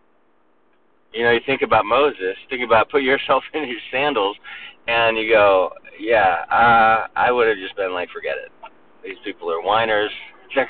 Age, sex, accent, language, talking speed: 30-49, male, American, English, 175 wpm